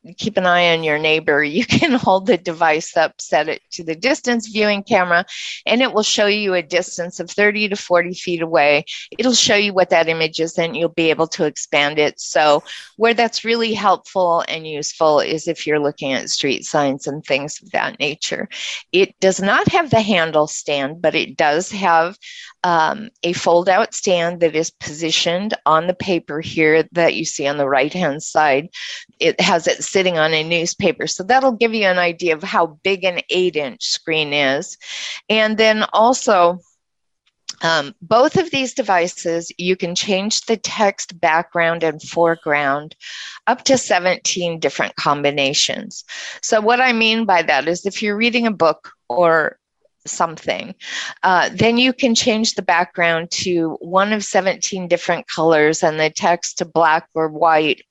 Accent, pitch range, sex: American, 160-210 Hz, female